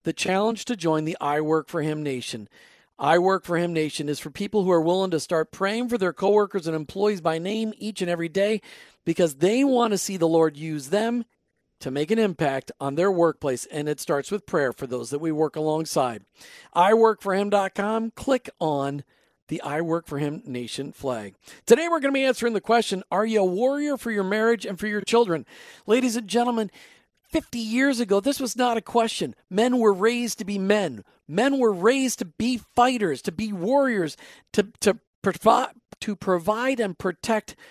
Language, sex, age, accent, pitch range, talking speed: English, male, 50-69, American, 170-230 Hz, 195 wpm